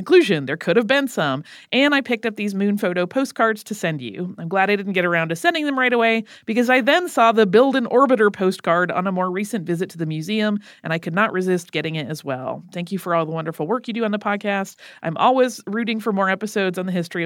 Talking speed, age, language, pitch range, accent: 260 wpm, 30-49, English, 175-230 Hz, American